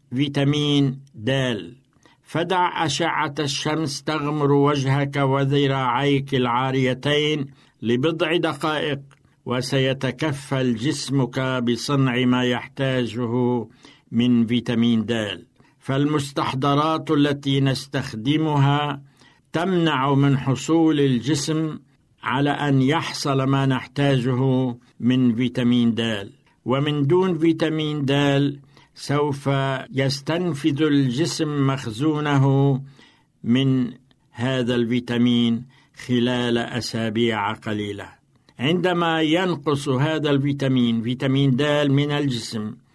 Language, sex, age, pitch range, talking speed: Arabic, male, 60-79, 125-145 Hz, 80 wpm